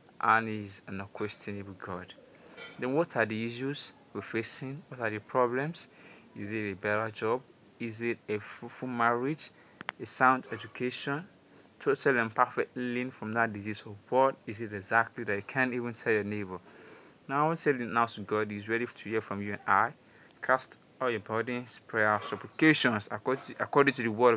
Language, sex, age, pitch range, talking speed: English, male, 20-39, 110-125 Hz, 185 wpm